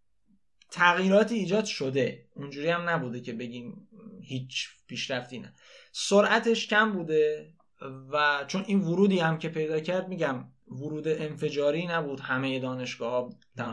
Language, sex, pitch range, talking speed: Persian, male, 130-175 Hz, 125 wpm